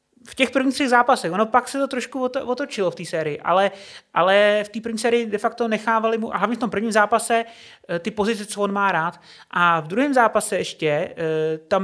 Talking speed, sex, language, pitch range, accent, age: 215 wpm, male, Czech, 175-225 Hz, native, 30-49